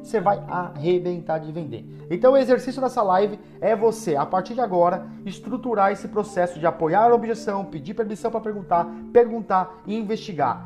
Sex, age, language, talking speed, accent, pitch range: male, 30-49, Portuguese, 170 wpm, Brazilian, 160-215 Hz